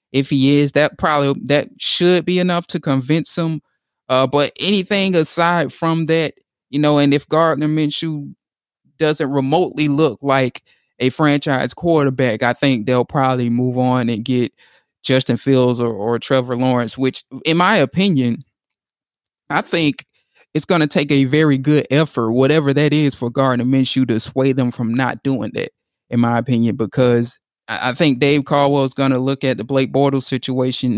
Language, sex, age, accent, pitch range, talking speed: English, male, 20-39, American, 125-150 Hz, 170 wpm